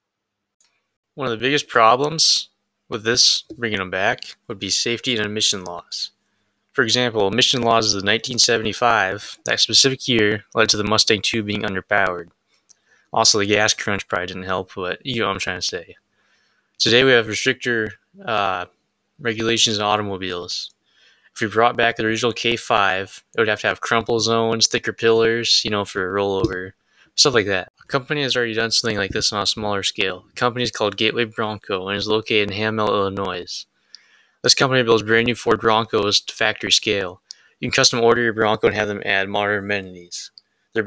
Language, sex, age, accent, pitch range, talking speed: English, male, 20-39, American, 100-115 Hz, 185 wpm